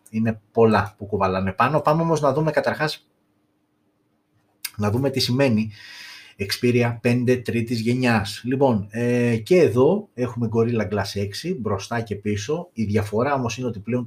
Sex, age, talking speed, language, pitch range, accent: male, 30-49, 150 wpm, Greek, 105-125 Hz, native